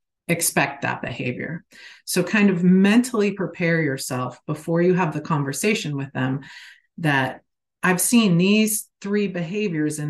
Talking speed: 135 wpm